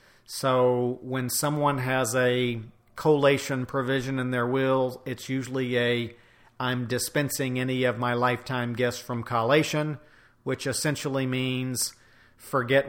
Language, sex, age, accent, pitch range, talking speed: English, male, 50-69, American, 120-135 Hz, 120 wpm